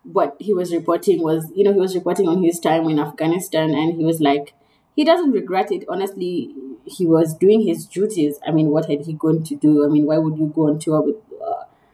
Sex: female